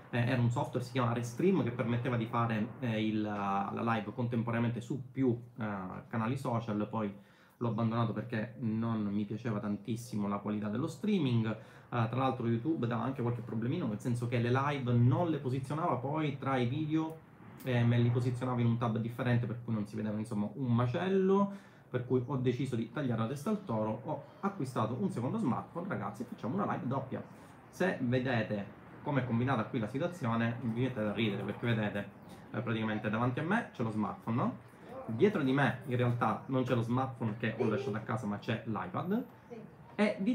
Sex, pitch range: male, 110-135 Hz